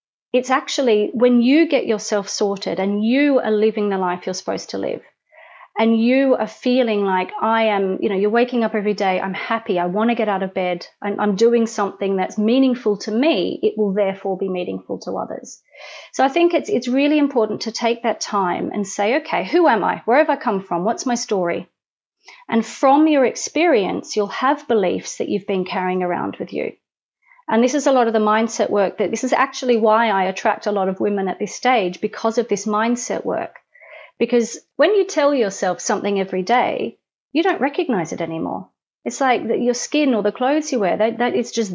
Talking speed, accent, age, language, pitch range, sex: 215 wpm, Australian, 30-49, English, 205-255 Hz, female